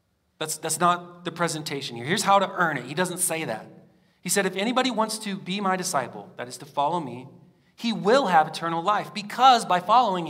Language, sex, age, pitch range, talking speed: English, male, 40-59, 175-225 Hz, 215 wpm